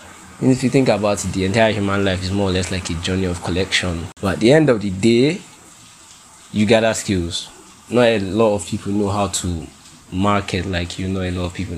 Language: English